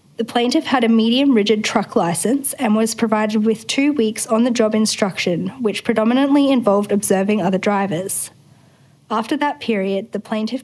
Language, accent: English, Australian